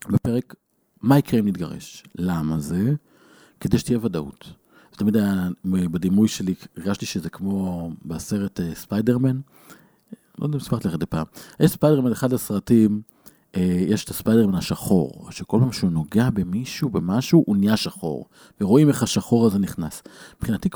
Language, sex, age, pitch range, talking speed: Hebrew, male, 50-69, 100-145 Hz, 145 wpm